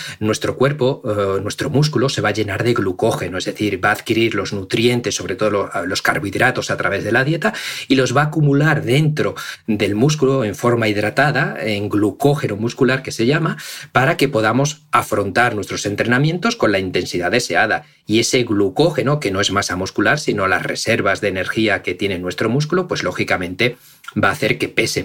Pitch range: 105-140 Hz